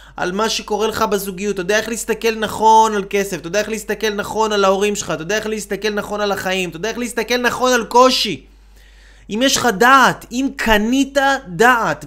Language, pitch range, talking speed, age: Hebrew, 200-240 Hz, 205 wpm, 20-39